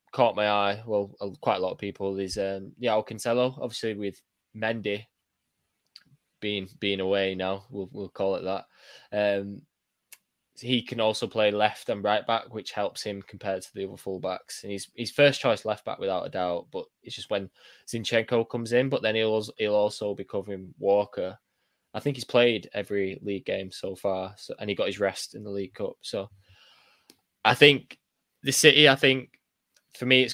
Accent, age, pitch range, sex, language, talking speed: British, 10-29, 100-120 Hz, male, English, 190 wpm